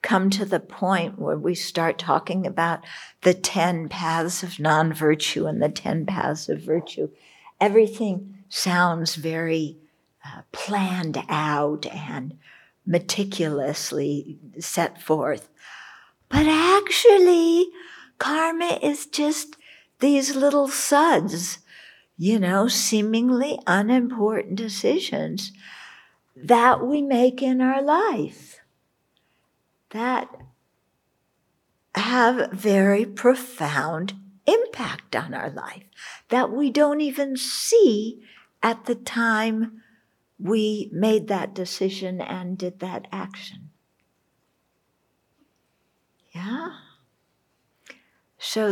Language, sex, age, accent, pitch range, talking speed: English, female, 60-79, American, 175-250 Hz, 95 wpm